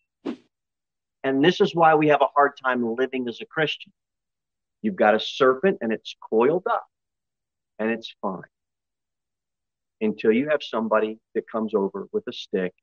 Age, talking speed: 40-59, 160 wpm